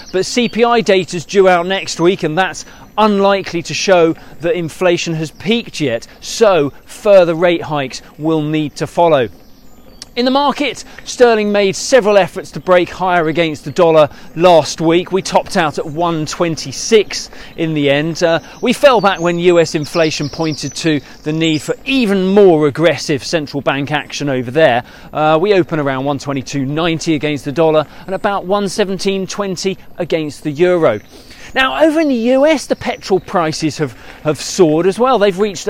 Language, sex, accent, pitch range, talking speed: English, male, British, 160-225 Hz, 165 wpm